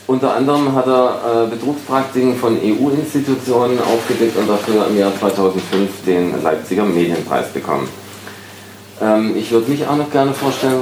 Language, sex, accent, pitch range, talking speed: German, male, German, 95-115 Hz, 145 wpm